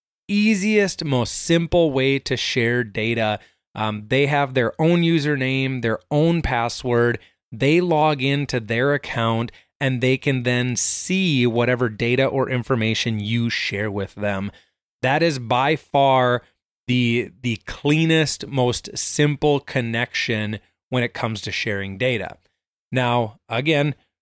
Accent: American